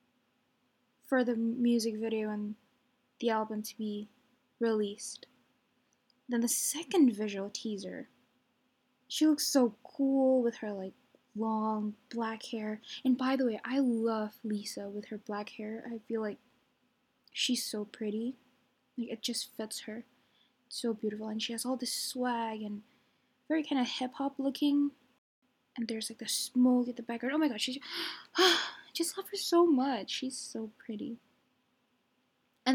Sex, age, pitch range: female, 10-29, 230-265 Hz